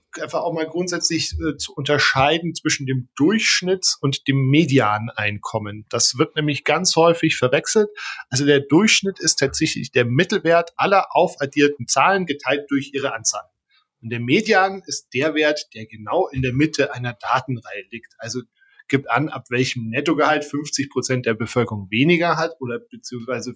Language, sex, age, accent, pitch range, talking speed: German, male, 10-29, German, 120-150 Hz, 155 wpm